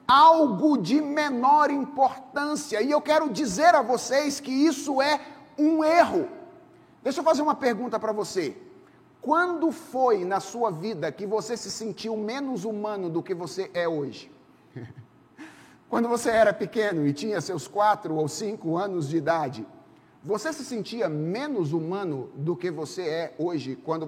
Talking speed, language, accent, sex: 155 wpm, Portuguese, Brazilian, male